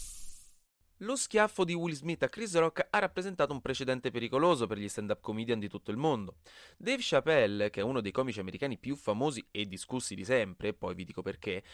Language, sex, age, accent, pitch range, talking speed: Italian, male, 20-39, native, 100-140 Hz, 205 wpm